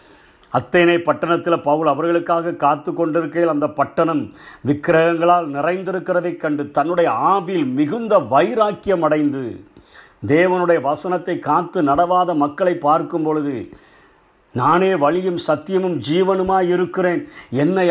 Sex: male